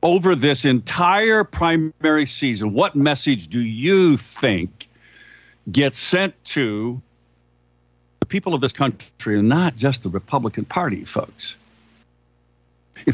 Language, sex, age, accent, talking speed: English, male, 60-79, American, 120 wpm